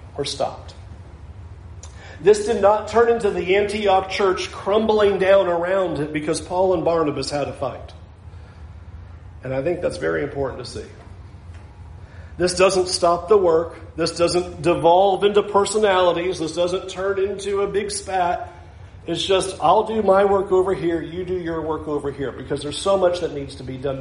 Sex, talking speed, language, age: male, 170 wpm, English, 40-59